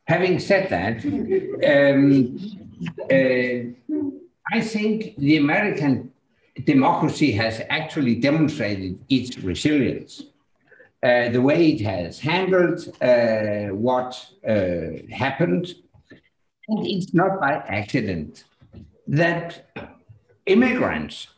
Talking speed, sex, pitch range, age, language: 90 wpm, male, 125-185 Hz, 60-79, Danish